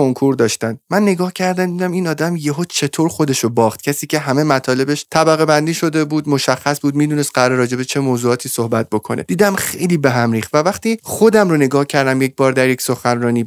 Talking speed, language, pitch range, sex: 185 wpm, Persian, 130-165 Hz, male